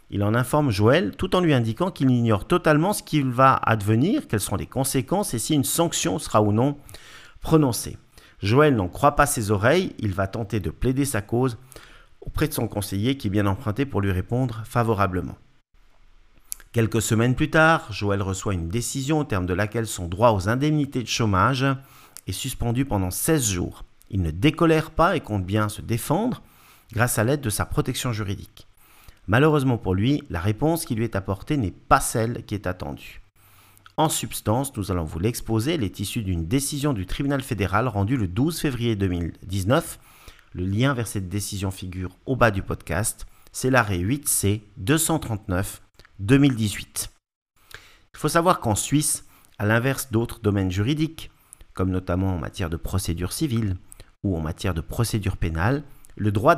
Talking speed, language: 175 wpm, French